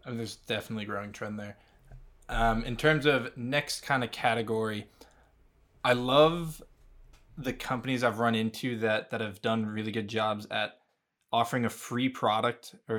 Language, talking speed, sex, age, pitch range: English, 165 wpm, male, 20-39, 110-125 Hz